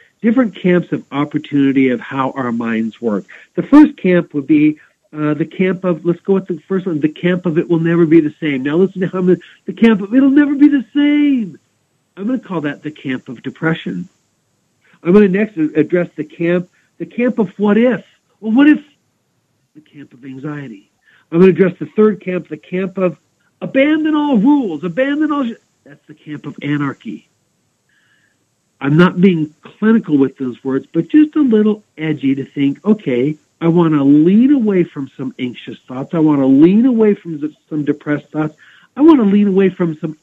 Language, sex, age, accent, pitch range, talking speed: English, male, 60-79, American, 145-200 Hz, 200 wpm